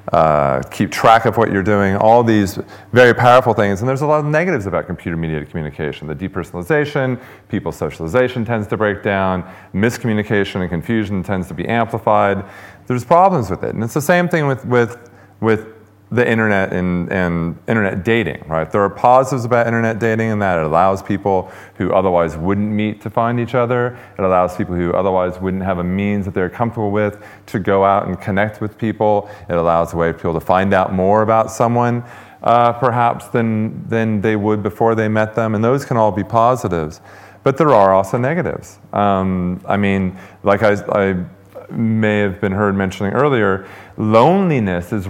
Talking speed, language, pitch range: 190 wpm, English, 95-115 Hz